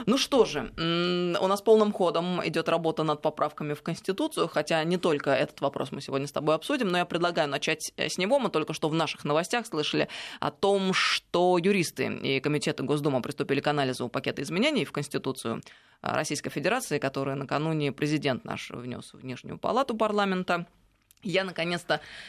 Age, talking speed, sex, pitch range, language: 20-39, 170 wpm, female, 145-185 Hz, Russian